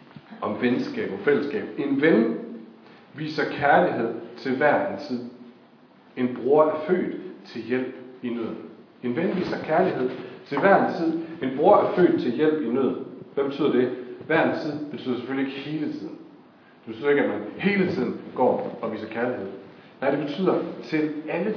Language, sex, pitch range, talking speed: Danish, male, 120-160 Hz, 175 wpm